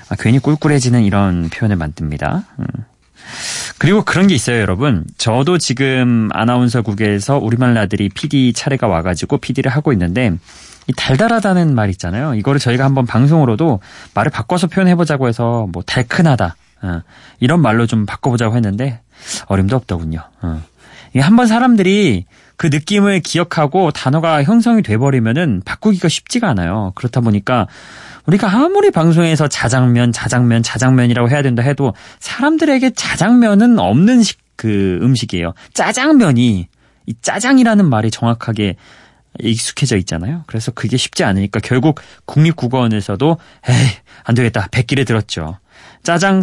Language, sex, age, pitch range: Korean, male, 30-49, 110-165 Hz